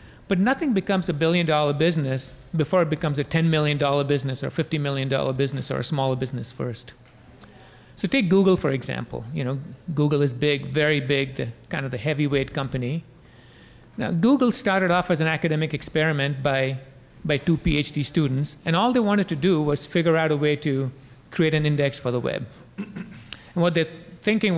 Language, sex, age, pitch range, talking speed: English, male, 40-59, 140-170 Hz, 190 wpm